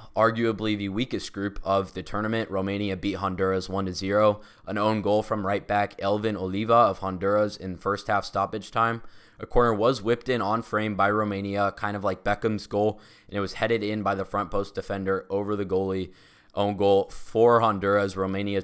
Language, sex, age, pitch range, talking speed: English, male, 20-39, 95-110 Hz, 190 wpm